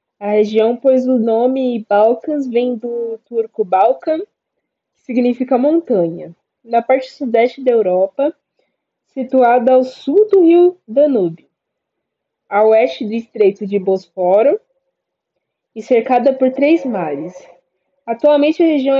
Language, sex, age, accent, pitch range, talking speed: Portuguese, female, 10-29, Brazilian, 220-275 Hz, 120 wpm